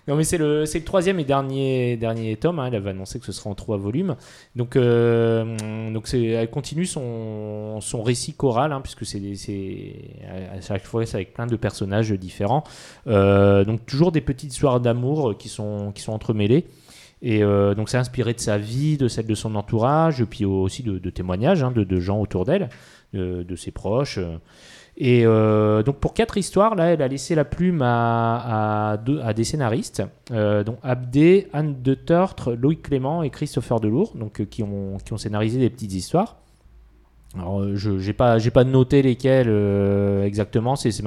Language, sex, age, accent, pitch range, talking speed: French, male, 30-49, French, 100-135 Hz, 200 wpm